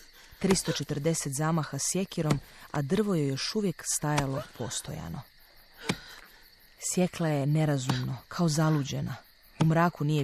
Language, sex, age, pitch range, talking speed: Croatian, female, 30-49, 140-175 Hz, 105 wpm